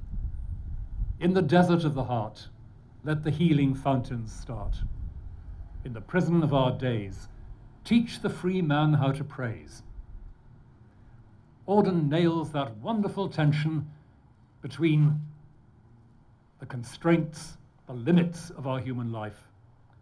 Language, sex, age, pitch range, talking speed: English, male, 60-79, 110-140 Hz, 115 wpm